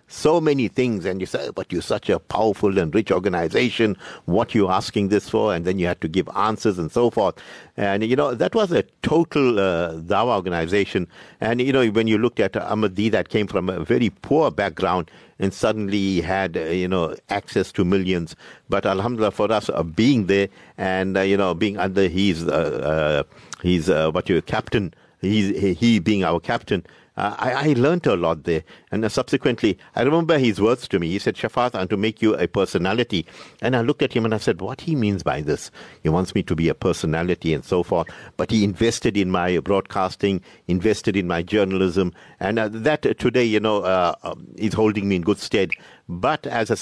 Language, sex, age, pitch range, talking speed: English, male, 50-69, 95-115 Hz, 215 wpm